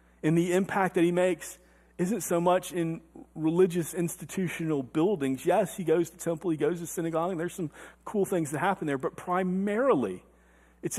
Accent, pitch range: American, 155-195 Hz